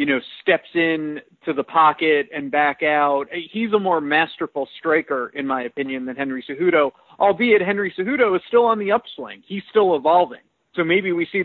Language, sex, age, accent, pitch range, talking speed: English, male, 40-59, American, 150-195 Hz, 190 wpm